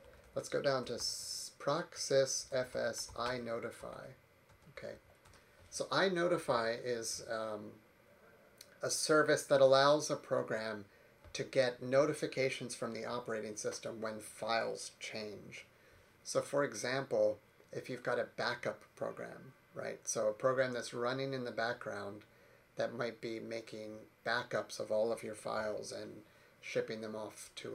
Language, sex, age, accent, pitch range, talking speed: English, male, 30-49, American, 110-140 Hz, 135 wpm